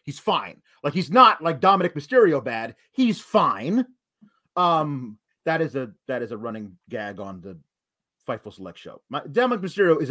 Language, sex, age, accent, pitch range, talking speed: English, male, 30-49, American, 170-260 Hz, 165 wpm